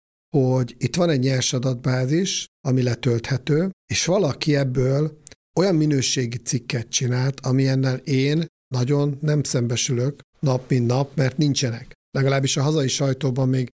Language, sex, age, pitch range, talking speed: Hungarian, male, 50-69, 125-145 Hz, 130 wpm